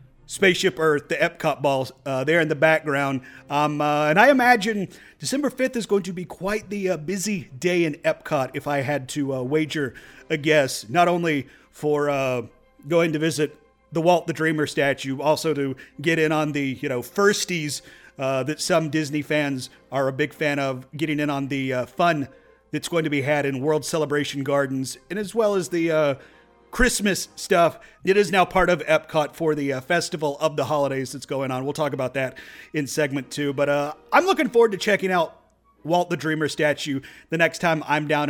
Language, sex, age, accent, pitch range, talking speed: English, male, 40-59, American, 145-175 Hz, 205 wpm